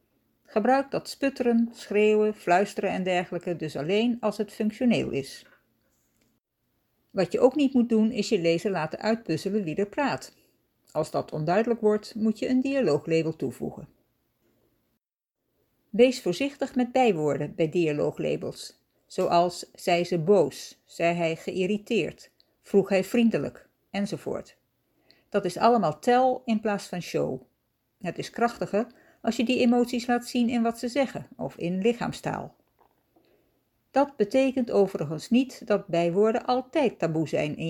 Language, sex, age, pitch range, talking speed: Dutch, female, 60-79, 180-245 Hz, 140 wpm